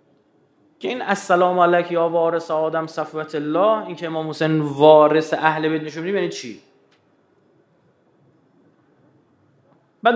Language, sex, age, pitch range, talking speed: Persian, male, 30-49, 155-200 Hz, 120 wpm